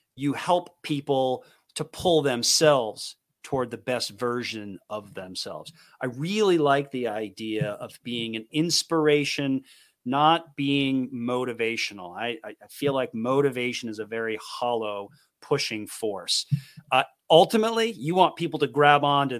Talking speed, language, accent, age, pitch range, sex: 135 wpm, English, American, 40-59, 115-155 Hz, male